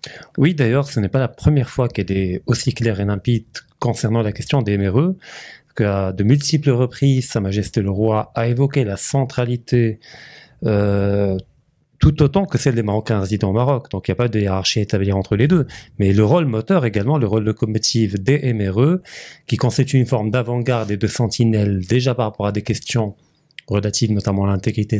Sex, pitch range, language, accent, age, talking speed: male, 105-140 Hz, French, French, 30-49, 195 wpm